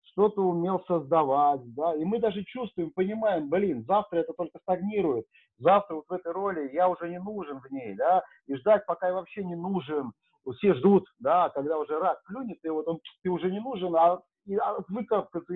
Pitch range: 145-195 Hz